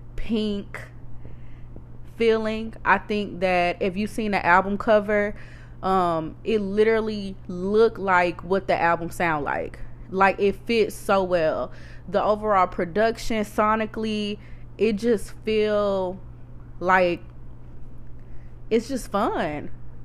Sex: female